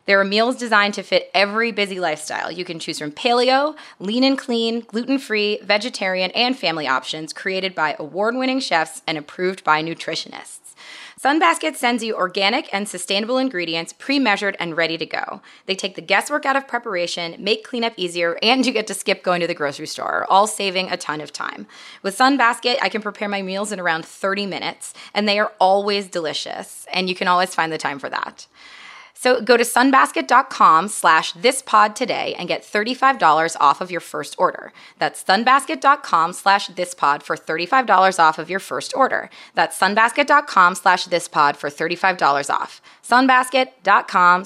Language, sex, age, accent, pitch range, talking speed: English, female, 20-39, American, 170-230 Hz, 175 wpm